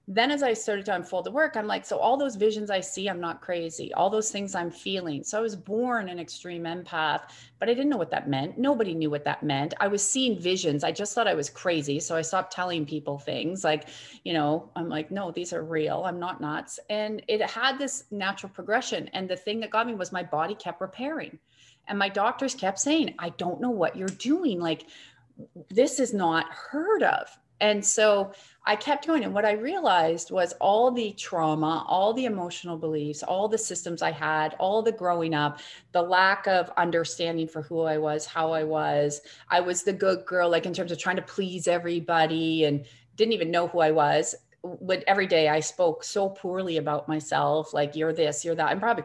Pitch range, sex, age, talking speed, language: 155-210 Hz, female, 30-49, 220 wpm, English